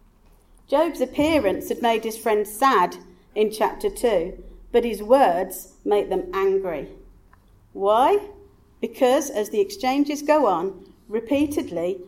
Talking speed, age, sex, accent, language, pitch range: 120 wpm, 40-59, female, British, English, 190-270 Hz